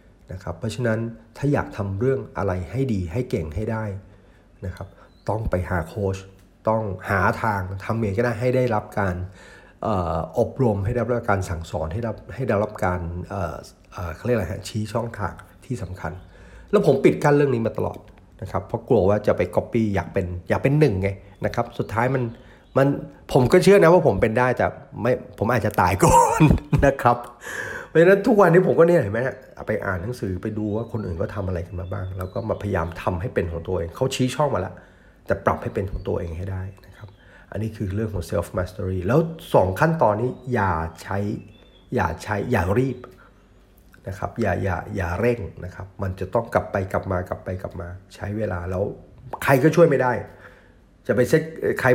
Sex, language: male, Thai